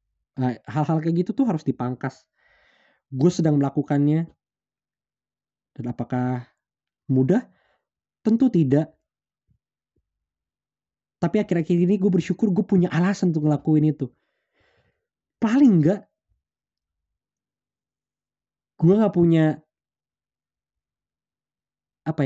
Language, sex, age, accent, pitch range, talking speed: Indonesian, male, 20-39, native, 150-185 Hz, 85 wpm